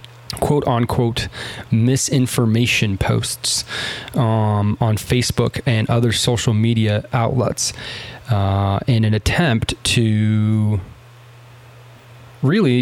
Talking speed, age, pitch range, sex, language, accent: 85 wpm, 20-39, 110-125 Hz, male, English, American